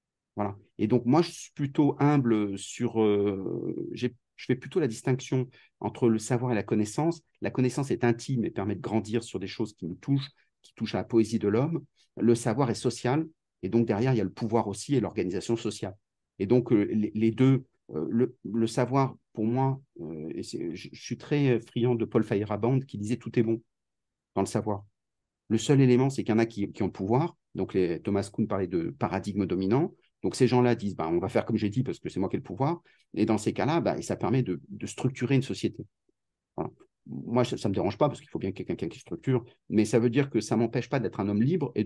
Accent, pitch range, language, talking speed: French, 105-135 Hz, French, 250 wpm